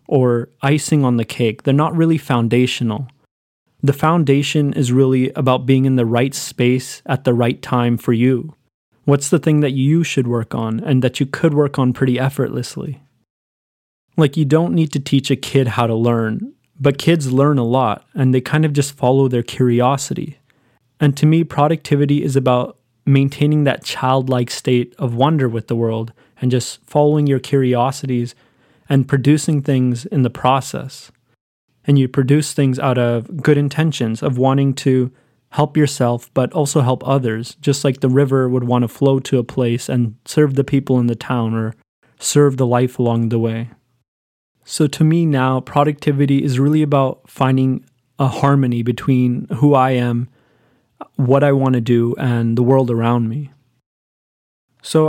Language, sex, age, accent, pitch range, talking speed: English, male, 20-39, American, 125-145 Hz, 175 wpm